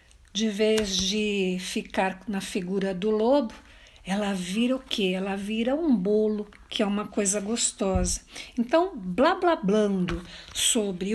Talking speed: 140 wpm